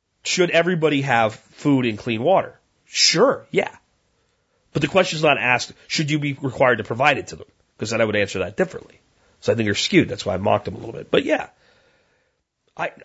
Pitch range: 110-150 Hz